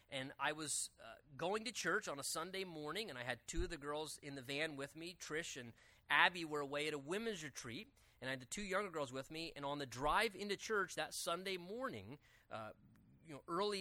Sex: male